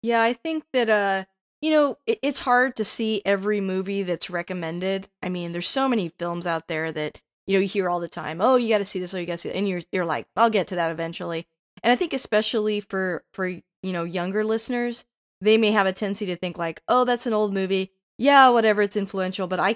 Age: 20-39